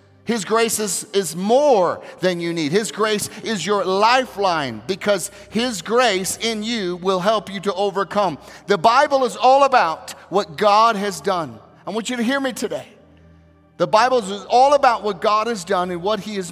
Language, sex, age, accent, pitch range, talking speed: English, male, 40-59, American, 190-225 Hz, 190 wpm